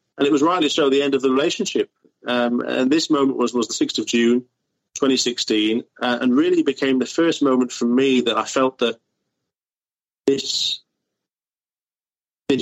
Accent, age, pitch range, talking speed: British, 30-49, 115-140 Hz, 170 wpm